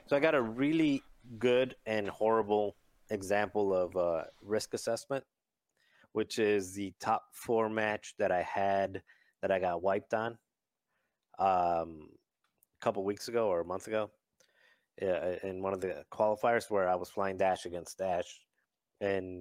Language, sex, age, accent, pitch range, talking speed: English, male, 30-49, American, 95-110 Hz, 160 wpm